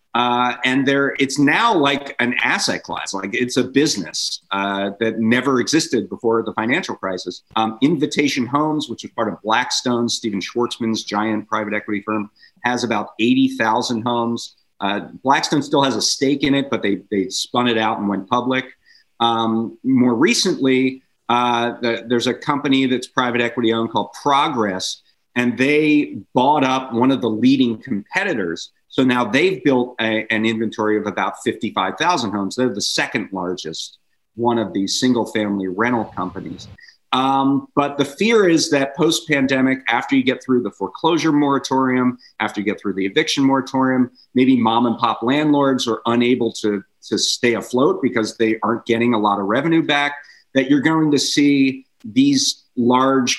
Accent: American